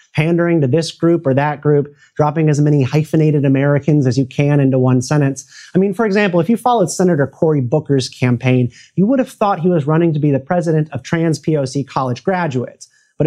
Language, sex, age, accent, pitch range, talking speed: English, male, 30-49, American, 135-175 Hz, 210 wpm